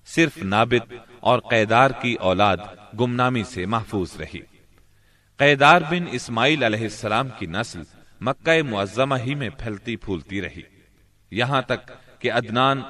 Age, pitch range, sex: 40-59, 100-130 Hz, male